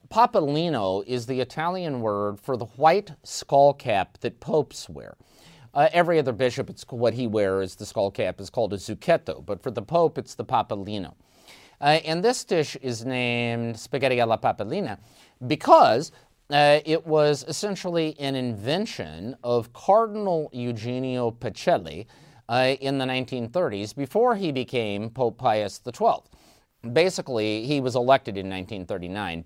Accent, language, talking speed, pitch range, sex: American, English, 140 wpm, 115-150 Hz, male